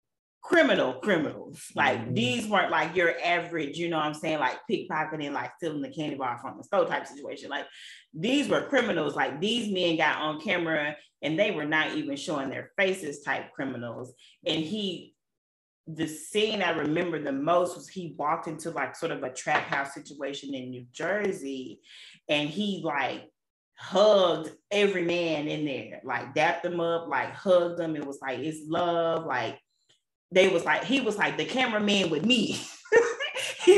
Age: 30-49